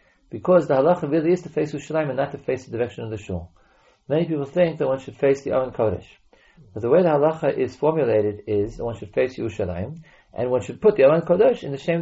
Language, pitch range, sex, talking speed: English, 105-150 Hz, male, 250 wpm